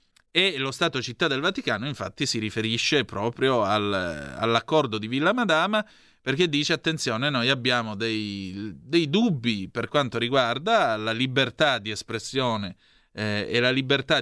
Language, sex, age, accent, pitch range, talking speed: Italian, male, 30-49, native, 110-145 Hz, 140 wpm